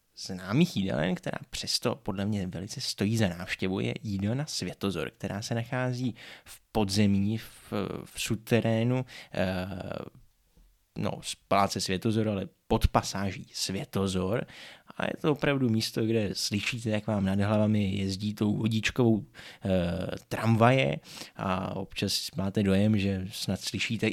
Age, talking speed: 20-39, 130 wpm